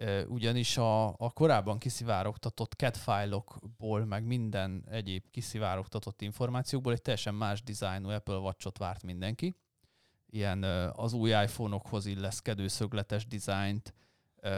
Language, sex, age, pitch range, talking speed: Hungarian, male, 30-49, 100-125 Hz, 105 wpm